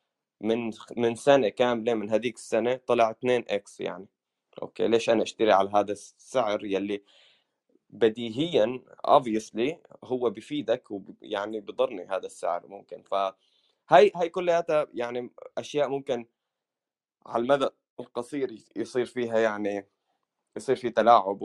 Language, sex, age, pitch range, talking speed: Arabic, male, 20-39, 105-130 Hz, 125 wpm